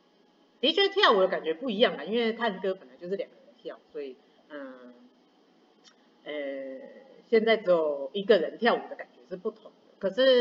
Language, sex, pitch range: Chinese, female, 175-260 Hz